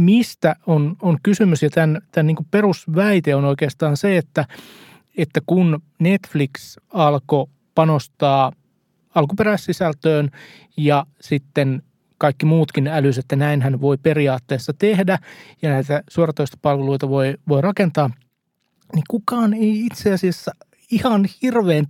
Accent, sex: native, male